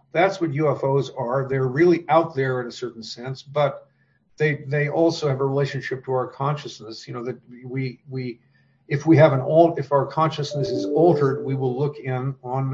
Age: 50-69